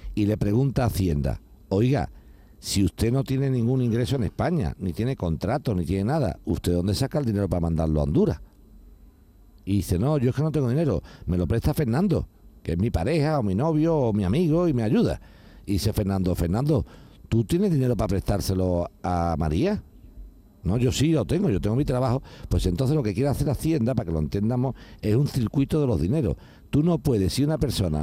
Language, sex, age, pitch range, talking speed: Spanish, male, 60-79, 90-130 Hz, 210 wpm